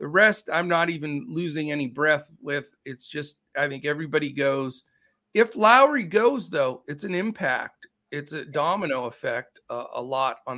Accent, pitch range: American, 145-200 Hz